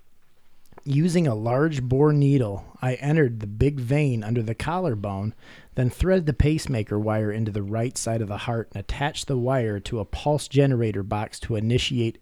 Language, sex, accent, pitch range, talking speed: English, male, American, 110-140 Hz, 175 wpm